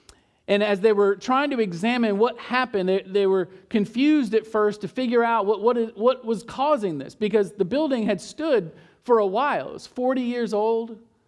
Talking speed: 190 wpm